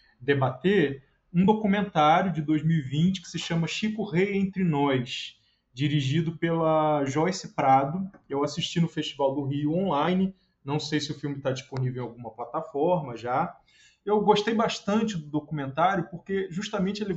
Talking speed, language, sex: 145 wpm, Portuguese, male